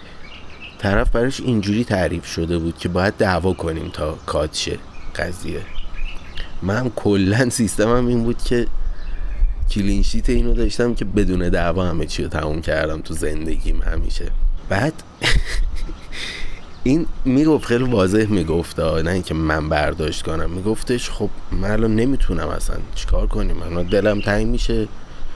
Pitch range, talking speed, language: 80-105 Hz, 130 wpm, Persian